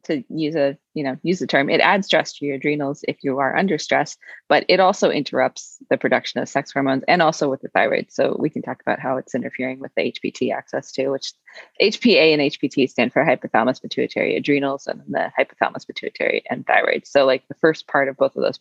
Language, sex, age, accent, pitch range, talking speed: English, female, 20-39, American, 140-205 Hz, 225 wpm